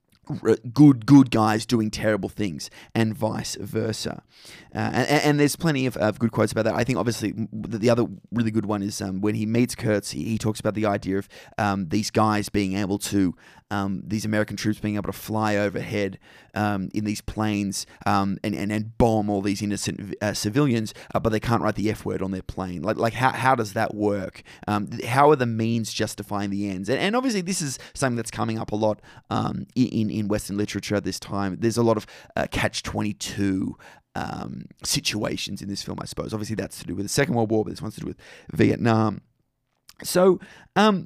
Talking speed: 215 wpm